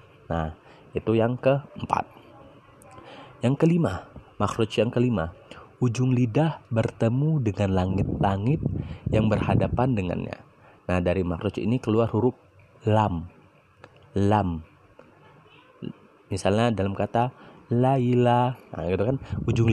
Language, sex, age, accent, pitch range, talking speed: Indonesian, male, 30-49, native, 100-125 Hz, 100 wpm